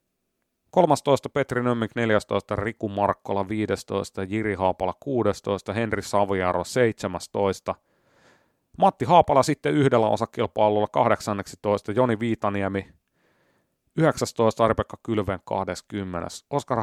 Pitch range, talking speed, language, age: 100-120 Hz, 95 wpm, Finnish, 30-49